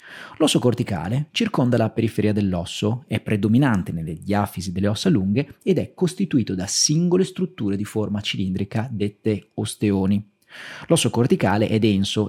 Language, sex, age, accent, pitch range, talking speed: Italian, male, 30-49, native, 100-150 Hz, 135 wpm